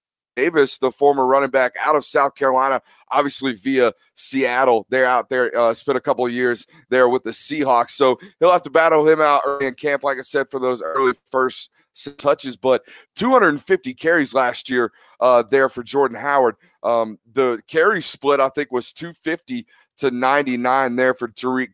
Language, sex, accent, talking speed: English, male, American, 180 wpm